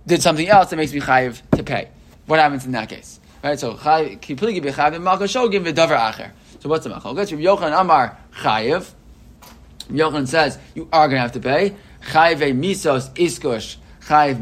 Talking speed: 170 wpm